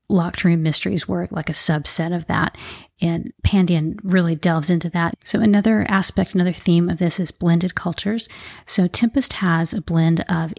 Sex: female